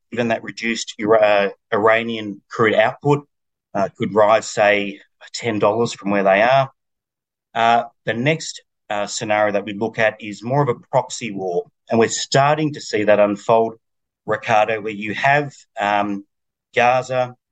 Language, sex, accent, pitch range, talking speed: English, male, Australian, 100-120 Hz, 145 wpm